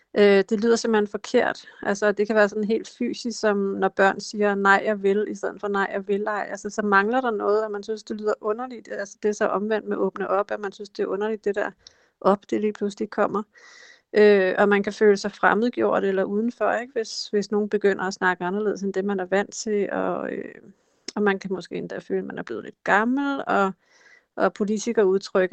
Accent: native